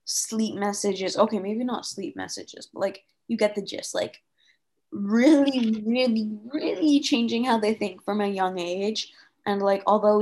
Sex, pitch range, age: female, 200-250 Hz, 20-39